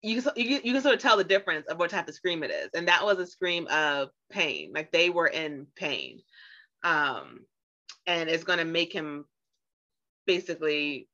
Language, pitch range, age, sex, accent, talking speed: English, 155-200 Hz, 30-49, female, American, 190 wpm